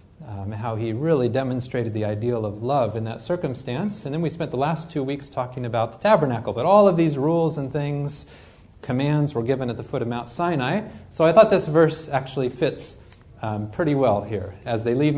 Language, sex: English, male